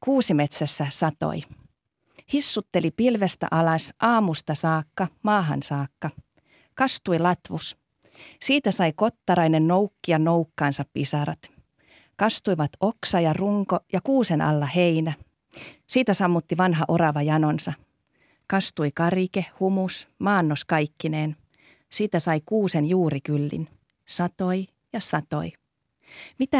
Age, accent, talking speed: 40-59, native, 105 wpm